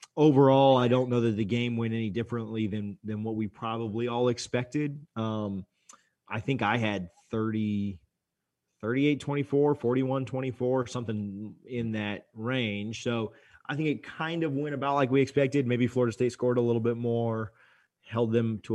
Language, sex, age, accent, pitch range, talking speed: English, male, 30-49, American, 110-125 Hz, 170 wpm